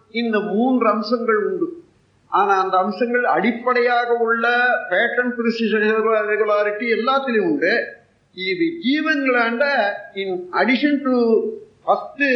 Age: 50-69